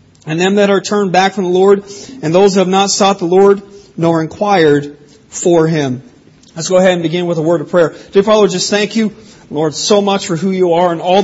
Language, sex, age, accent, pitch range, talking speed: English, male, 40-59, American, 155-185 Hz, 240 wpm